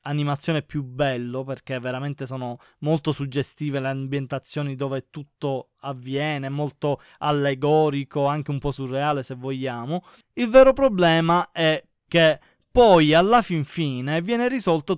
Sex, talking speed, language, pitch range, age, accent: male, 130 wpm, Italian, 140-170 Hz, 20-39, native